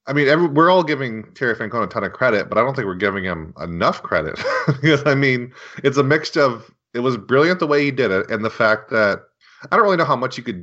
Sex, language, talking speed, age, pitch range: male, English, 270 wpm, 30-49, 95-130 Hz